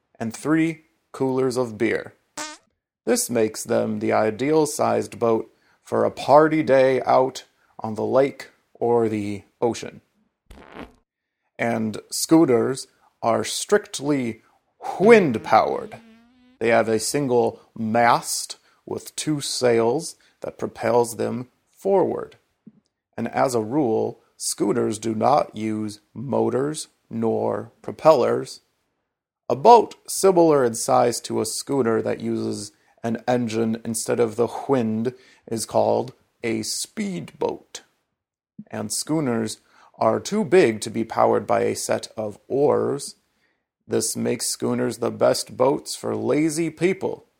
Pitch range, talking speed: 115-145 Hz, 120 wpm